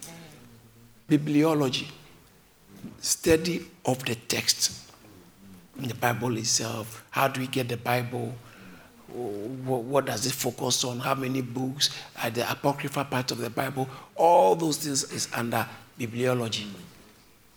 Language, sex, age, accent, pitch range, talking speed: English, male, 60-79, Nigerian, 120-145 Hz, 125 wpm